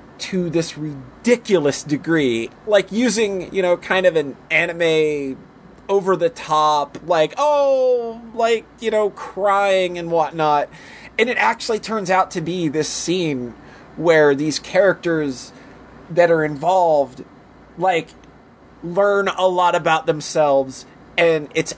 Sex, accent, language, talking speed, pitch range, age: male, American, English, 125 wpm, 130-180 Hz, 30-49